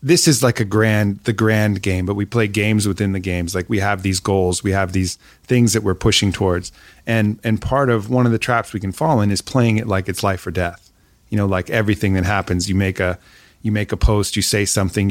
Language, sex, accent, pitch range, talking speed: English, male, American, 95-115 Hz, 255 wpm